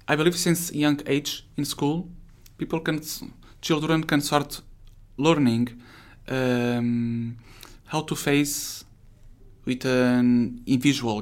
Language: English